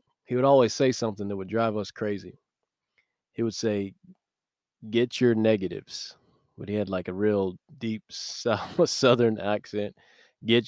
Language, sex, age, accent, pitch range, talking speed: English, male, 20-39, American, 105-125 Hz, 145 wpm